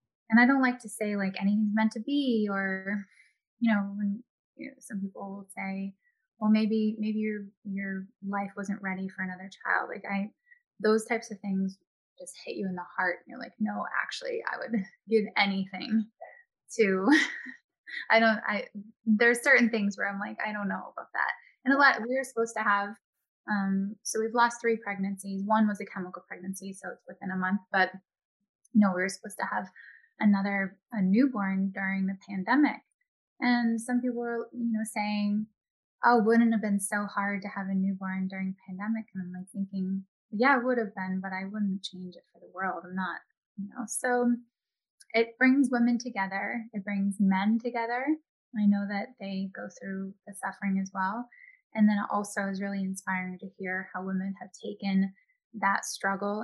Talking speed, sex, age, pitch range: 195 wpm, female, 10-29, 195-235 Hz